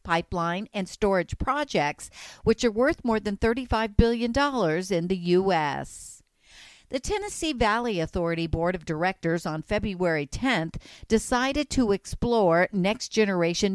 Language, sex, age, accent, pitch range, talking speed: English, female, 50-69, American, 175-225 Hz, 120 wpm